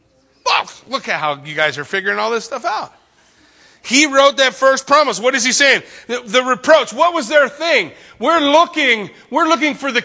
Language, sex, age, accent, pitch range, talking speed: English, male, 40-59, American, 195-270 Hz, 195 wpm